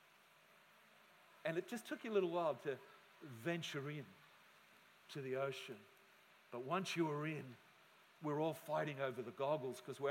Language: English